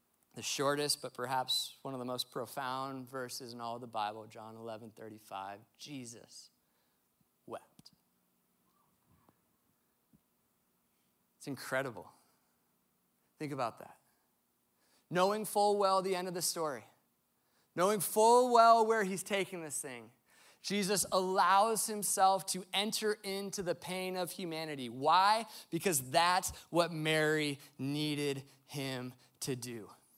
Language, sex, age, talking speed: English, male, 30-49, 125 wpm